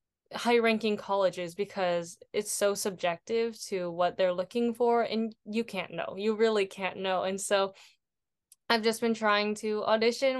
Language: English